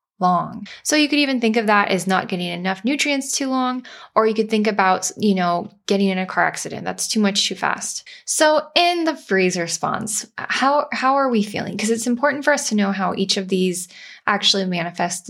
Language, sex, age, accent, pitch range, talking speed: English, female, 10-29, American, 195-245 Hz, 215 wpm